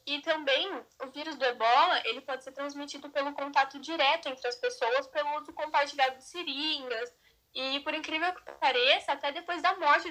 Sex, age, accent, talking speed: female, 10-29, Brazilian, 180 wpm